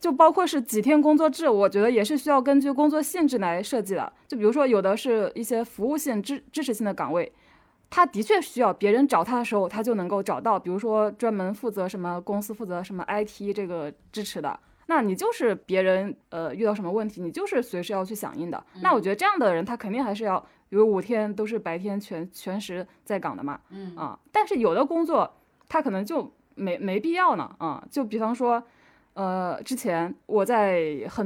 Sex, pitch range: female, 190-270 Hz